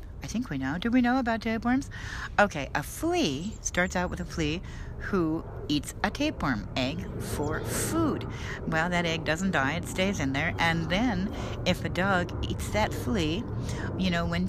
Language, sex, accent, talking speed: English, female, American, 180 wpm